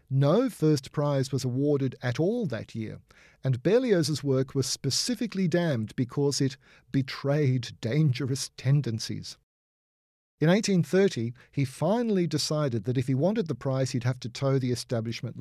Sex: male